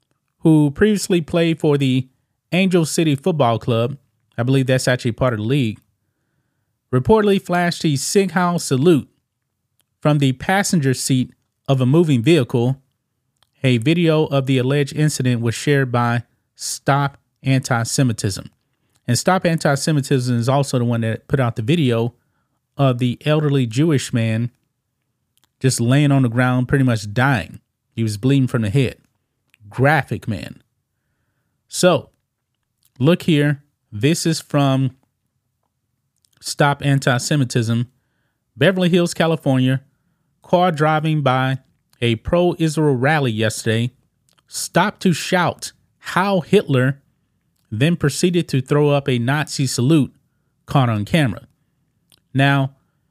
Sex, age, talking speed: male, 30-49, 125 wpm